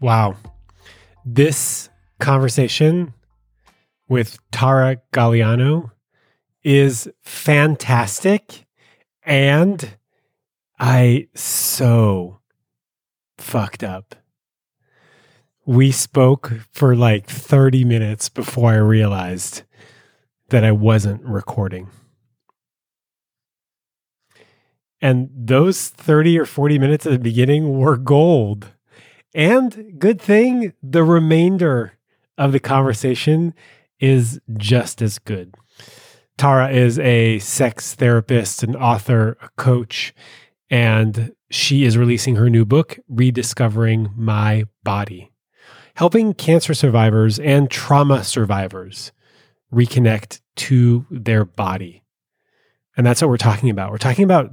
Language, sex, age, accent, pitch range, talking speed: English, male, 30-49, American, 110-140 Hz, 95 wpm